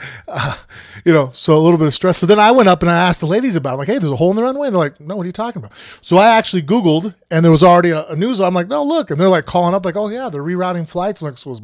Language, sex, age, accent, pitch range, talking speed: English, male, 30-49, American, 140-180 Hz, 350 wpm